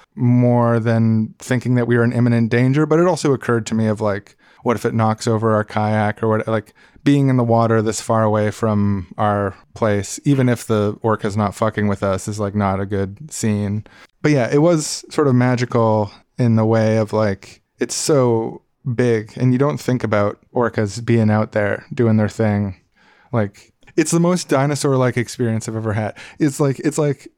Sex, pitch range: male, 110-130 Hz